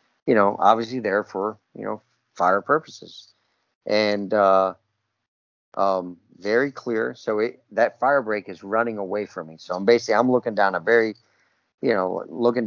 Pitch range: 100-120 Hz